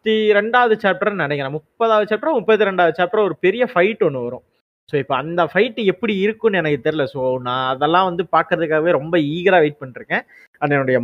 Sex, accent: male, native